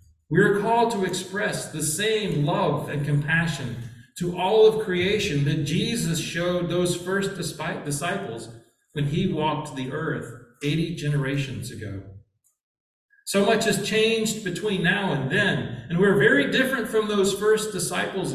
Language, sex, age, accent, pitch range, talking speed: English, male, 40-59, American, 130-200 Hz, 145 wpm